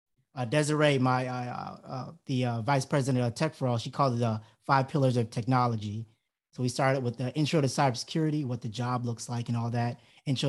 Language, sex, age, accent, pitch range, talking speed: English, male, 30-49, American, 120-145 Hz, 210 wpm